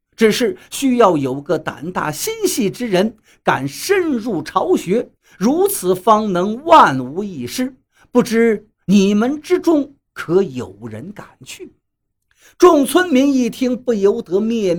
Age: 50-69